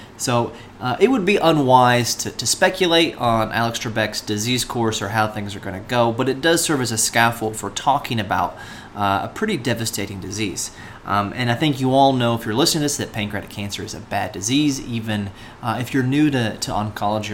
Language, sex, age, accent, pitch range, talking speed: English, male, 30-49, American, 105-125 Hz, 220 wpm